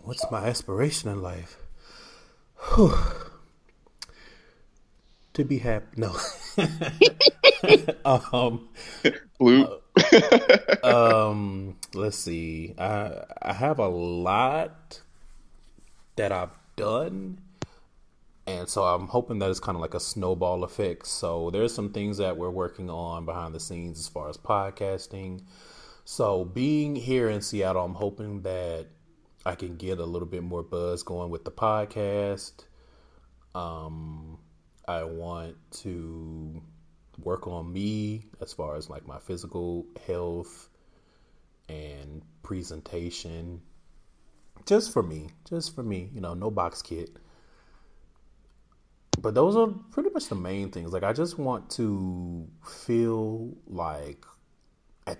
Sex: male